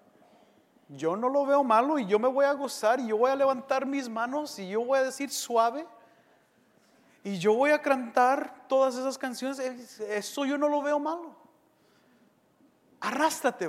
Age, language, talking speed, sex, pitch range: 40-59, English, 170 wpm, male, 225-295 Hz